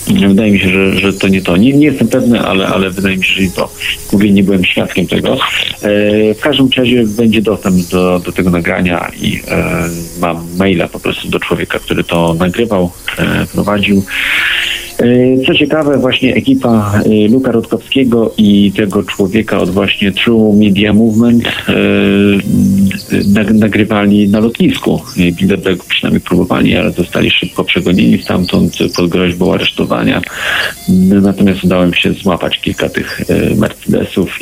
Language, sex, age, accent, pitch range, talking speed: Polish, male, 50-69, native, 90-115 Hz, 145 wpm